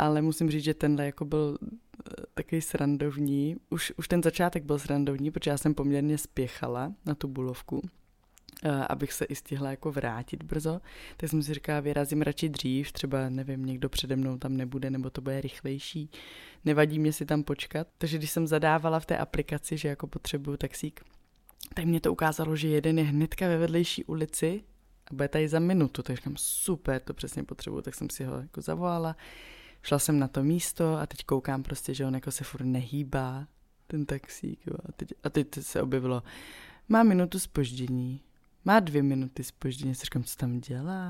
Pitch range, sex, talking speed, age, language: 135-160 Hz, female, 185 wpm, 20-39, Czech